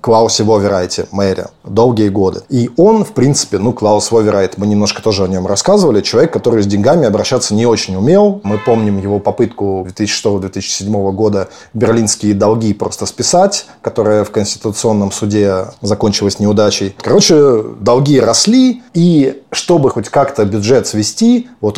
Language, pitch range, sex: Russian, 100-125 Hz, male